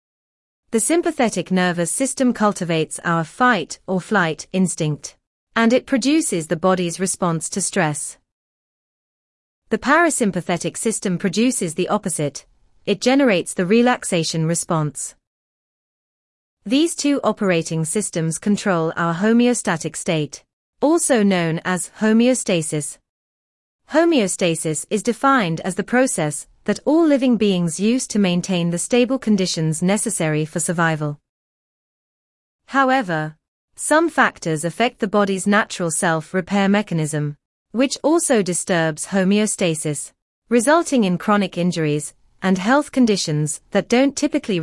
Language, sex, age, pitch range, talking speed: English, female, 30-49, 165-230 Hz, 110 wpm